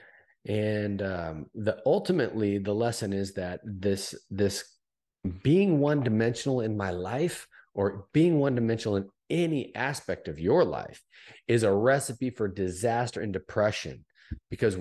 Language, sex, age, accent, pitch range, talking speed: English, male, 40-59, American, 100-130 Hz, 130 wpm